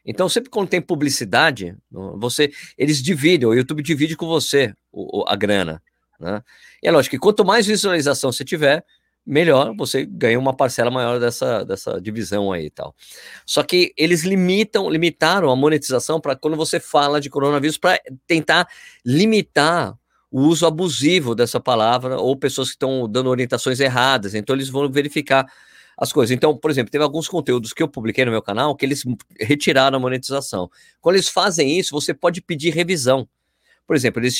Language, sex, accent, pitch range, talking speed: Portuguese, male, Brazilian, 125-170 Hz, 170 wpm